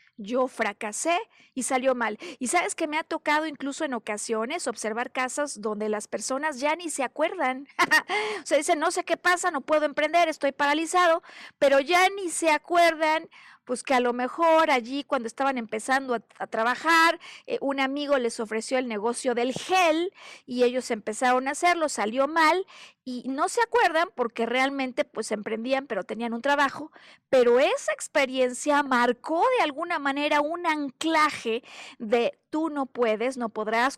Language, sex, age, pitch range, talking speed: Spanish, female, 40-59, 245-320 Hz, 170 wpm